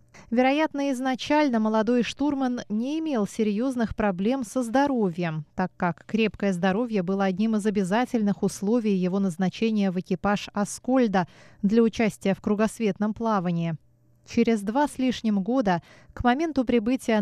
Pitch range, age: 195-250 Hz, 20-39